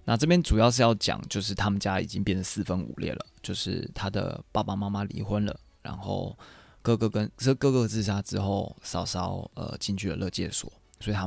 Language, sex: Chinese, male